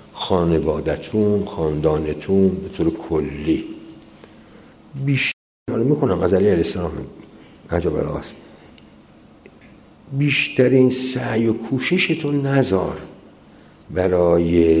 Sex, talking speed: male, 55 wpm